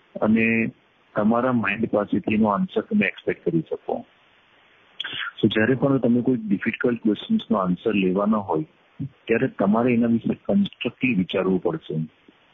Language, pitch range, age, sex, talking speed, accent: English, 100-130 Hz, 50-69, male, 80 wpm, Indian